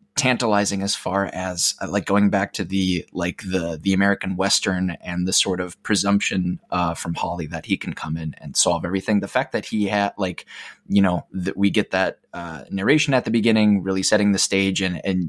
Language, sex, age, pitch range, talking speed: English, male, 20-39, 95-110 Hz, 210 wpm